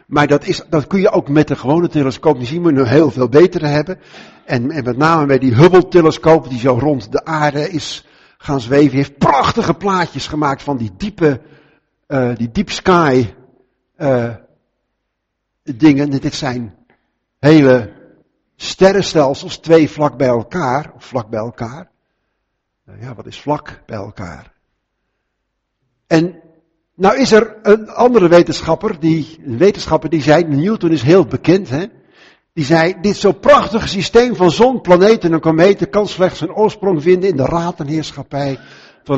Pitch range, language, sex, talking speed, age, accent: 125-170 Hz, Finnish, male, 160 wpm, 60-79, Dutch